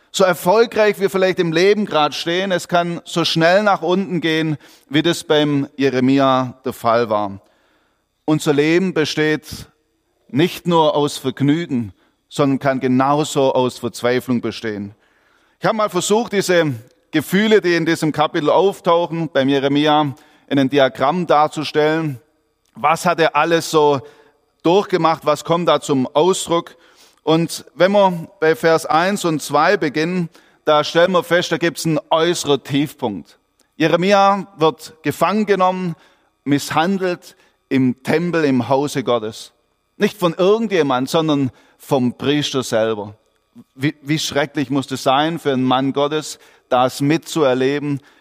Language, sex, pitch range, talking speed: German, male, 135-170 Hz, 140 wpm